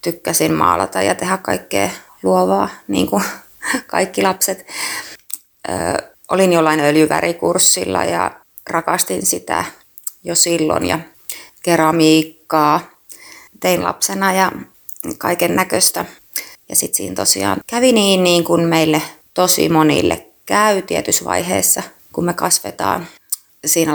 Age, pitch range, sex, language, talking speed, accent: 30-49, 110-185 Hz, female, Finnish, 110 wpm, native